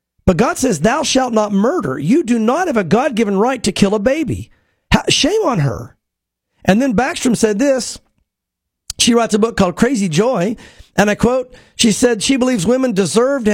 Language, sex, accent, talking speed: English, male, American, 190 wpm